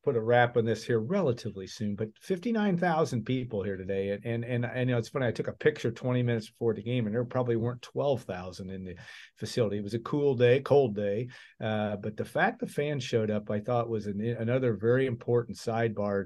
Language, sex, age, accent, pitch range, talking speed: English, male, 50-69, American, 110-125 Hz, 220 wpm